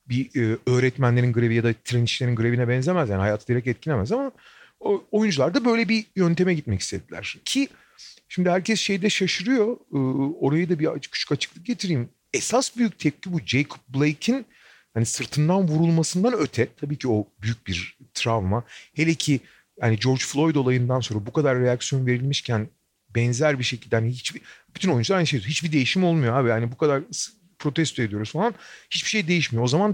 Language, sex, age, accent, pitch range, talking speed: Turkish, male, 40-59, native, 120-180 Hz, 165 wpm